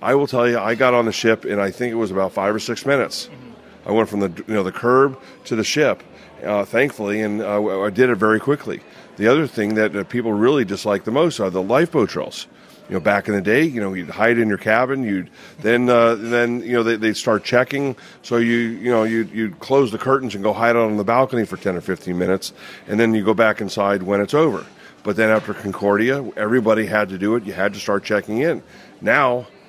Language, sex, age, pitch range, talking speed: English, male, 40-59, 105-120 Hz, 245 wpm